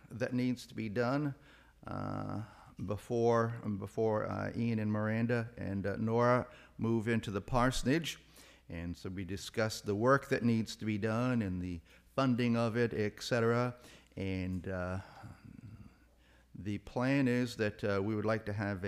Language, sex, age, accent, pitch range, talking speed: English, male, 50-69, American, 95-120 Hz, 155 wpm